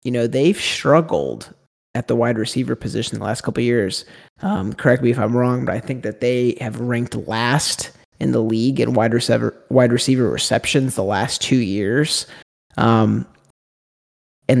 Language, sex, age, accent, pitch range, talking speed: English, male, 30-49, American, 115-135 Hz, 175 wpm